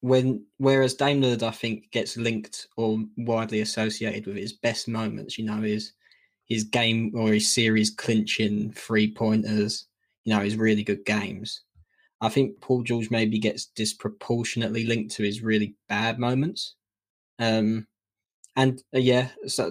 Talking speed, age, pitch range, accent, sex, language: 150 wpm, 10-29, 105-115 Hz, British, male, English